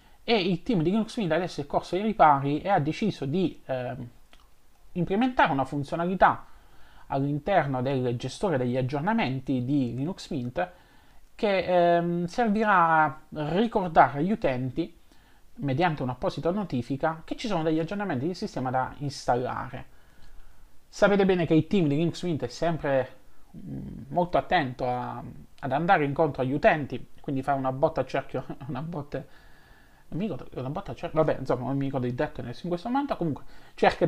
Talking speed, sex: 150 wpm, male